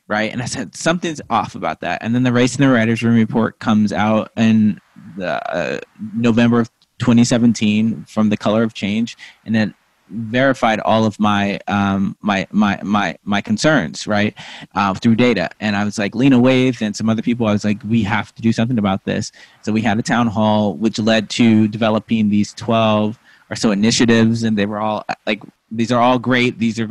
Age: 20-39